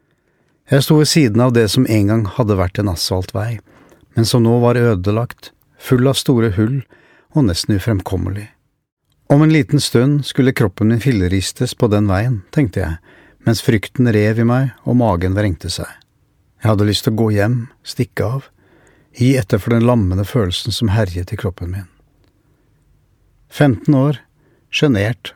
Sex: male